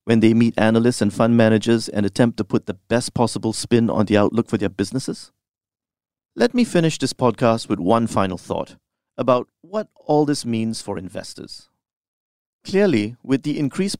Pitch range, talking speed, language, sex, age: 105-130 Hz, 175 wpm, English, male, 40-59